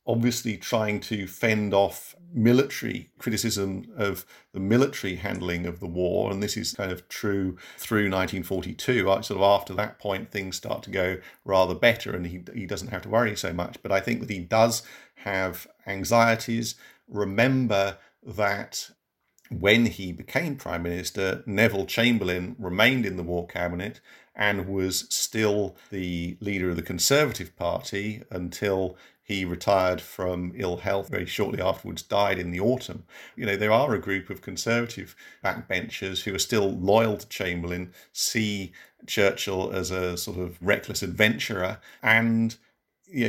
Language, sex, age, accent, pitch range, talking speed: English, male, 50-69, British, 95-115 Hz, 150 wpm